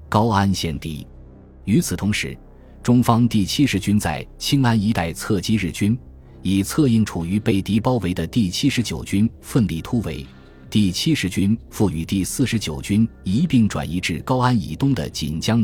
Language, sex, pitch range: Chinese, male, 80-110 Hz